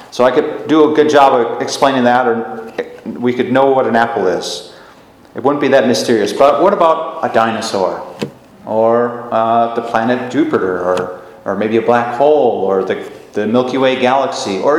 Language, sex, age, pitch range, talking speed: English, male, 40-59, 115-150 Hz, 185 wpm